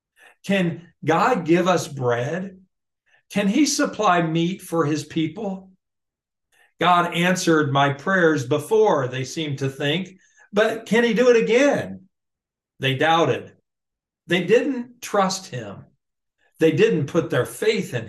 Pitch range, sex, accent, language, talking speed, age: 145-195 Hz, male, American, English, 130 wpm, 50-69